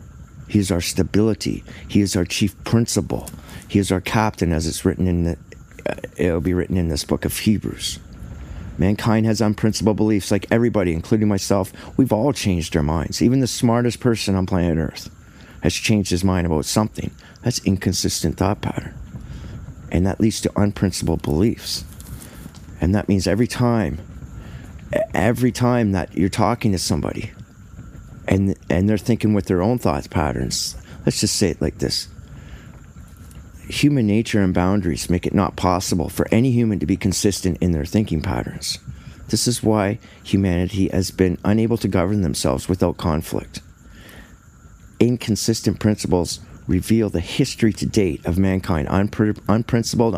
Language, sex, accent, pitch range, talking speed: English, male, American, 85-110 Hz, 155 wpm